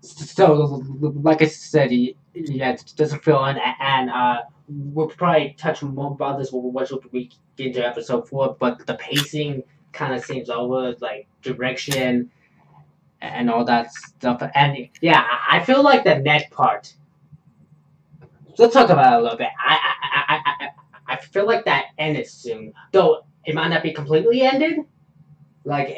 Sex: male